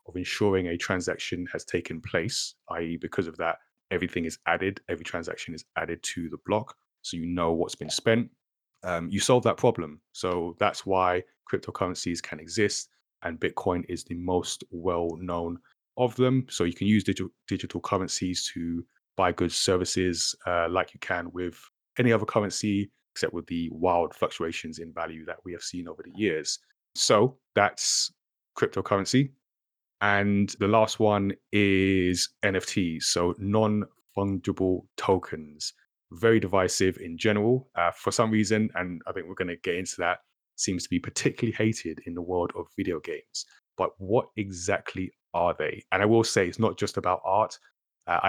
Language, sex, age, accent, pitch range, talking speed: English, male, 30-49, British, 85-105 Hz, 165 wpm